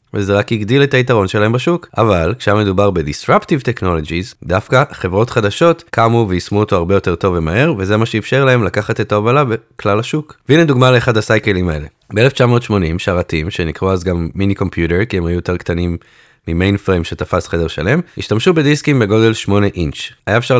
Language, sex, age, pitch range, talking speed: Hebrew, male, 20-39, 90-125 Hz, 175 wpm